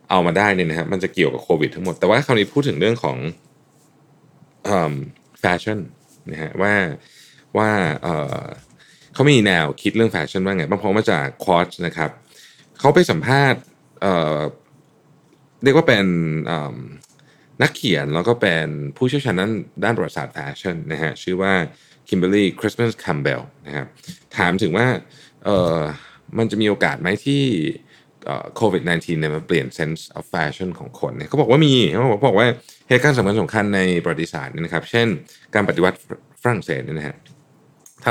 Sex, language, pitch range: male, Thai, 85-120 Hz